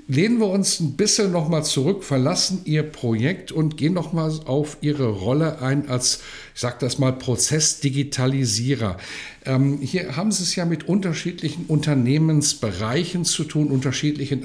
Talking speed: 155 wpm